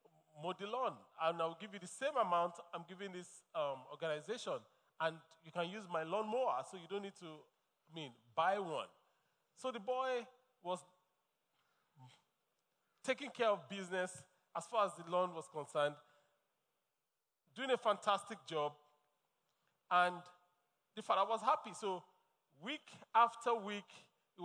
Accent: Nigerian